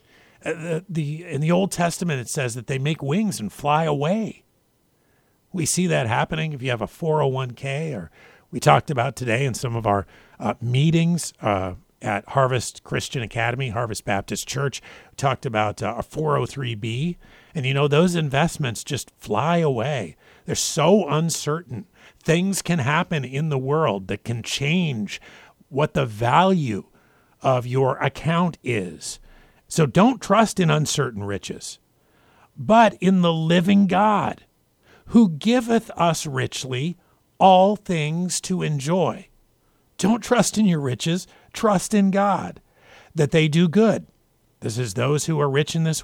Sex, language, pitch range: male, English, 130-185 Hz